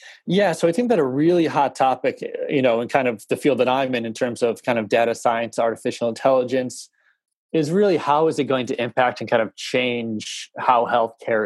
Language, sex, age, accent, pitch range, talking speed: English, male, 20-39, American, 115-140 Hz, 220 wpm